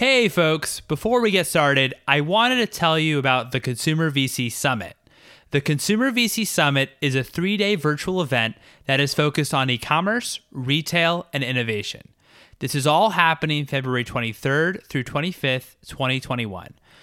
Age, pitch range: 20-39, 130-165 Hz